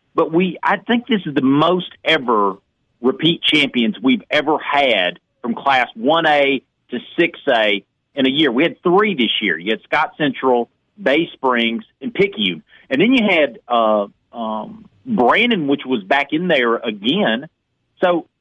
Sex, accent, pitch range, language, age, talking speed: male, American, 135-200 Hz, English, 40-59, 160 wpm